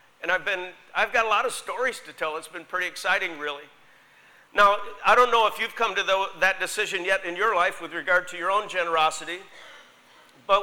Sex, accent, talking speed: male, American, 215 wpm